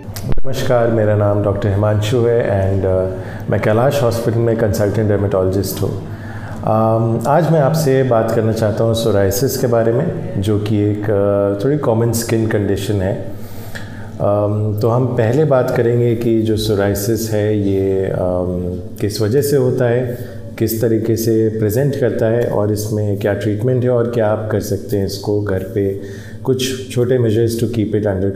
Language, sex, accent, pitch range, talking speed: Hindi, male, native, 105-120 Hz, 170 wpm